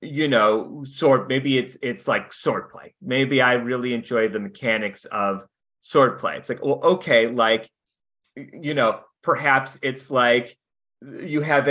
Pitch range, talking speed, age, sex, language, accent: 120-150 Hz, 155 wpm, 30-49, male, English, American